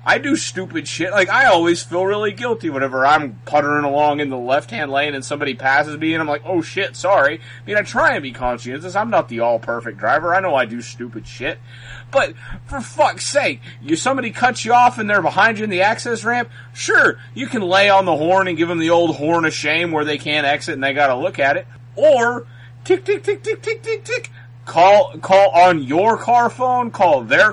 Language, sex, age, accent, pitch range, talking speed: English, male, 30-49, American, 140-215 Hz, 230 wpm